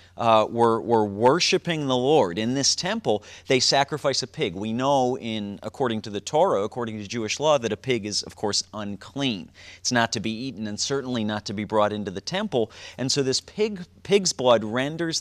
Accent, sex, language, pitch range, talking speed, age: American, male, English, 105-135 Hz, 205 wpm, 40-59